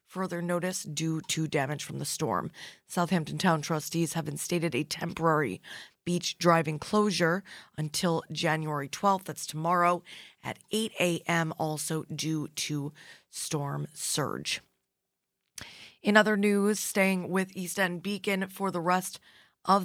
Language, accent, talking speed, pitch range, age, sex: English, American, 130 wpm, 160-185 Hz, 20-39, female